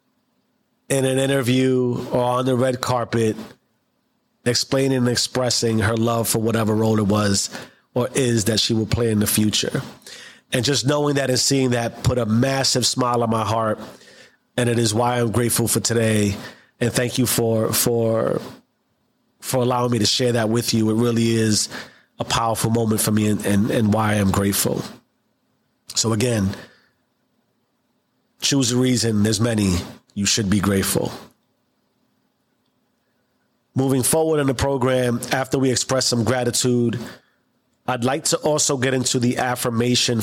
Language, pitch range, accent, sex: English, 115-130 Hz, American, male